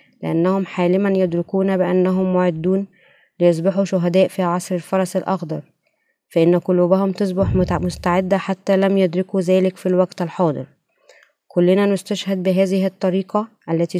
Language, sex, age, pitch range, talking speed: Arabic, female, 20-39, 175-195 Hz, 115 wpm